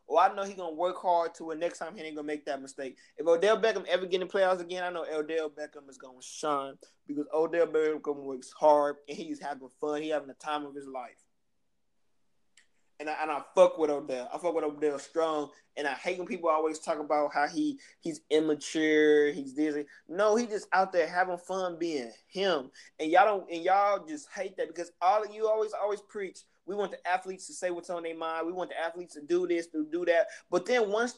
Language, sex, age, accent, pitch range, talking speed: English, male, 20-39, American, 155-205 Hz, 235 wpm